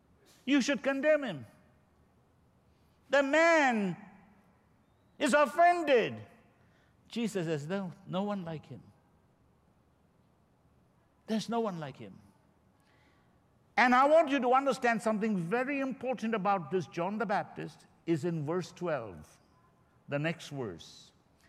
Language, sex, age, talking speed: English, male, 60-79, 115 wpm